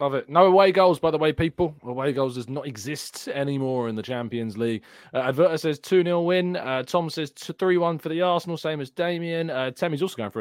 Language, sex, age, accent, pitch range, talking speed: English, male, 20-39, British, 120-170 Hz, 225 wpm